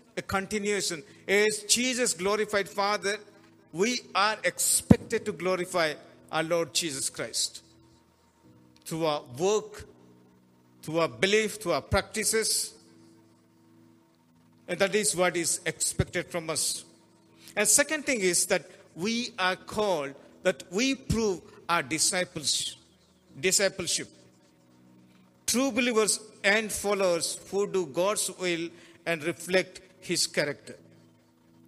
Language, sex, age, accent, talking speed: Telugu, male, 50-69, native, 110 wpm